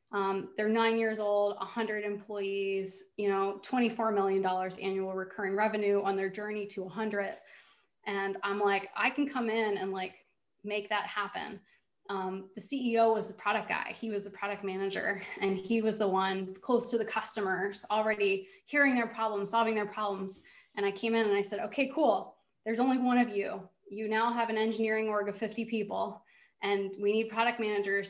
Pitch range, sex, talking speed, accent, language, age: 200-225 Hz, female, 185 wpm, American, English, 20-39